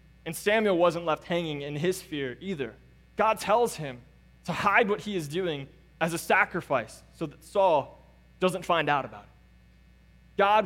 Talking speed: 170 wpm